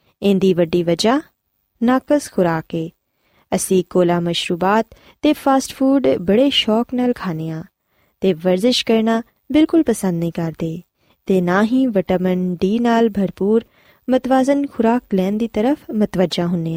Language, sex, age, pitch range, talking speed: Punjabi, female, 20-39, 185-265 Hz, 130 wpm